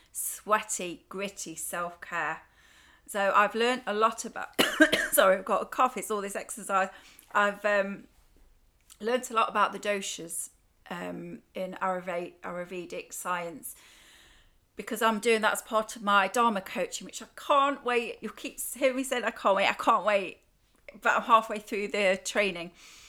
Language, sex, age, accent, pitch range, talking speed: English, female, 30-49, British, 190-230 Hz, 160 wpm